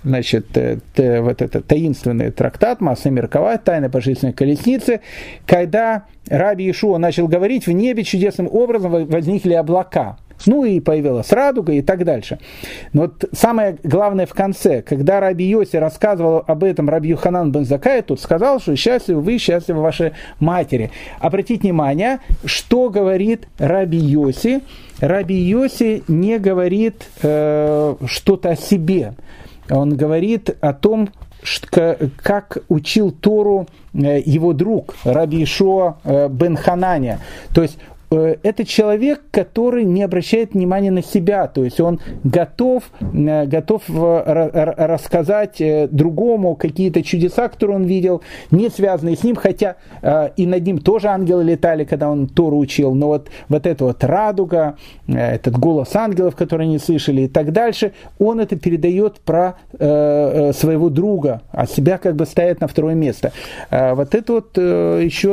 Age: 40-59